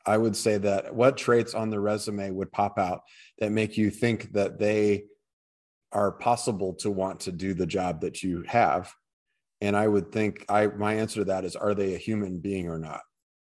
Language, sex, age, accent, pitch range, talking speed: English, male, 30-49, American, 100-115 Hz, 205 wpm